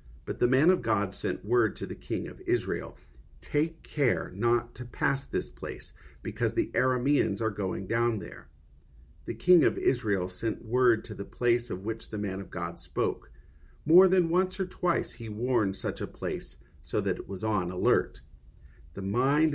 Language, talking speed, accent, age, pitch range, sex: English, 185 wpm, American, 50-69, 95-140 Hz, male